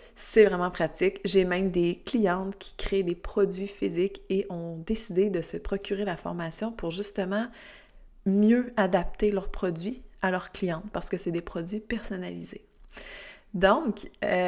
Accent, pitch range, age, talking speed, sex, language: Canadian, 175-220 Hz, 20-39, 150 wpm, female, French